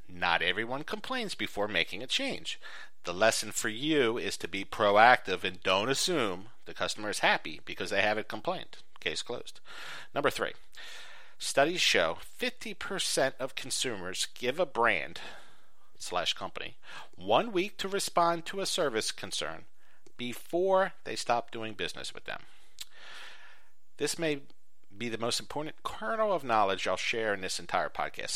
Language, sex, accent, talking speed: English, male, American, 150 wpm